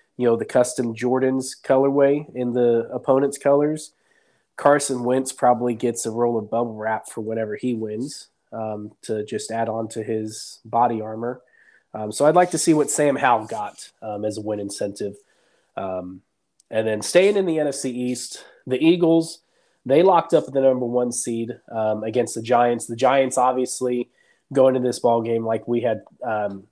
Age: 20-39